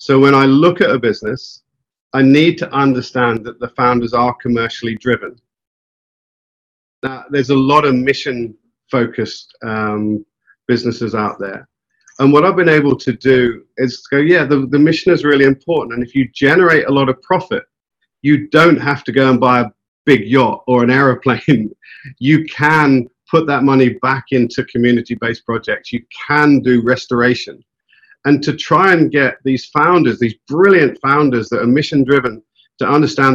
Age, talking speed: 50-69, 165 wpm